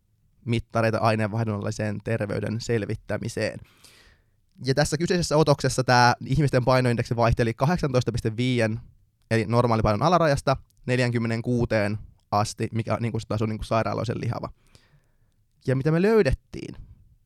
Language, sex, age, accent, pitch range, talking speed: Finnish, male, 20-39, native, 110-135 Hz, 95 wpm